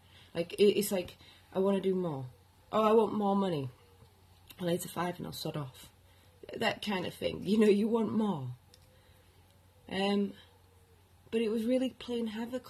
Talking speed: 175 wpm